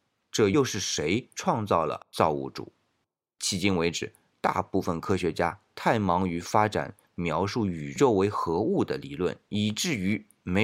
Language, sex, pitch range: Chinese, male, 85-115 Hz